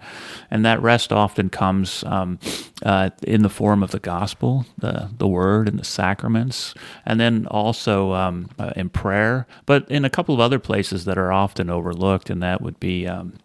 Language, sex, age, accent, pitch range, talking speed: English, male, 30-49, American, 95-105 Hz, 185 wpm